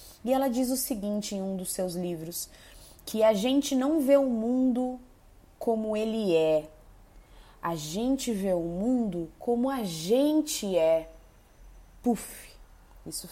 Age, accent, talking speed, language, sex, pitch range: 20-39, Brazilian, 140 wpm, Portuguese, female, 170-245 Hz